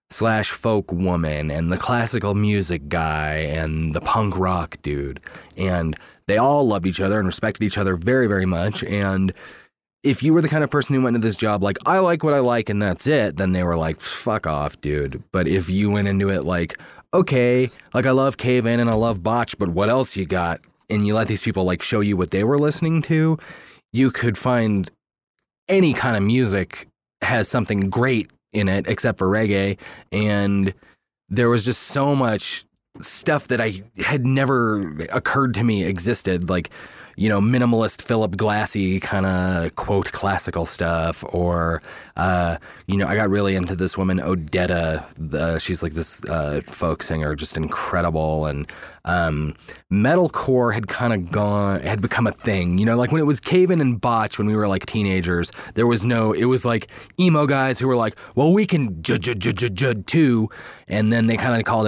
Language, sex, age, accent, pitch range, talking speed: English, male, 30-49, American, 90-120 Hz, 195 wpm